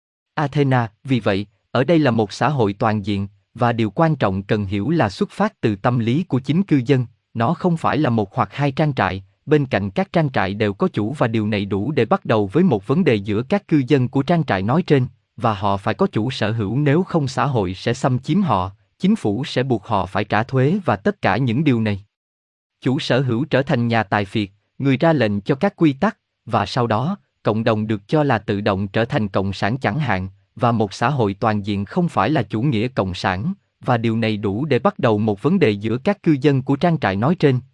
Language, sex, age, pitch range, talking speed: Vietnamese, male, 20-39, 105-145 Hz, 250 wpm